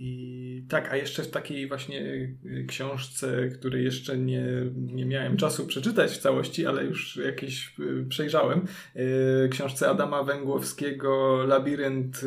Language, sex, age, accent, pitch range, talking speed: Polish, male, 20-39, native, 130-160 Hz, 120 wpm